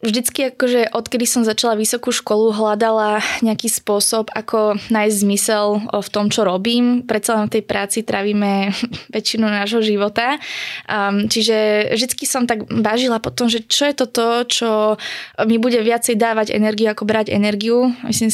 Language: Slovak